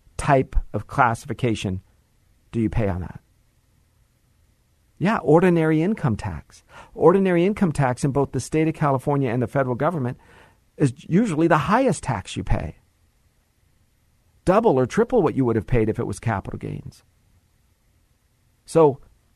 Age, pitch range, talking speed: 50-69, 110-160 Hz, 145 wpm